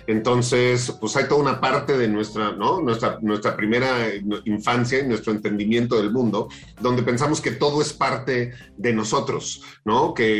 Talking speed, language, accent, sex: 160 wpm, Spanish, Mexican, male